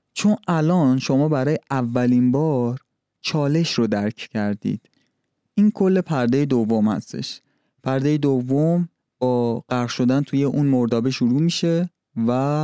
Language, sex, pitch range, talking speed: Persian, male, 120-150 Hz, 125 wpm